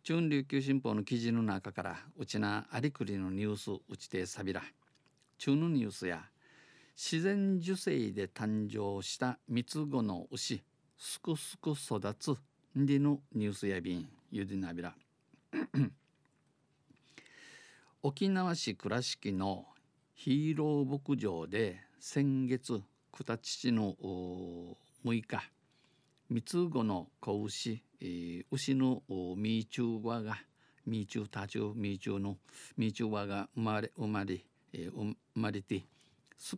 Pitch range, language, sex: 100-140 Hz, Japanese, male